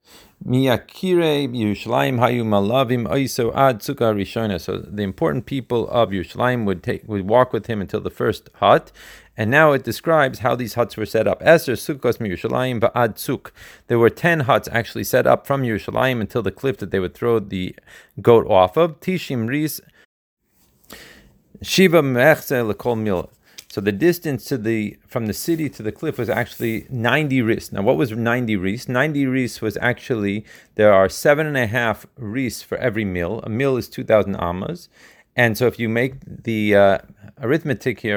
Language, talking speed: Hebrew, 175 wpm